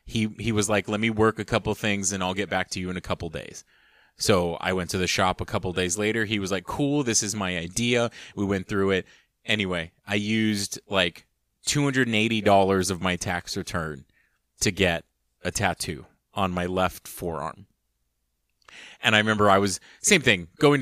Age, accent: 30-49, American